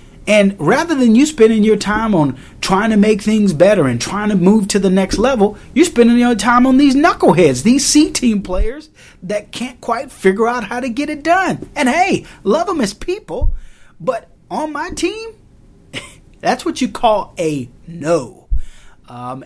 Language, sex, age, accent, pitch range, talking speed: English, male, 30-49, American, 140-220 Hz, 180 wpm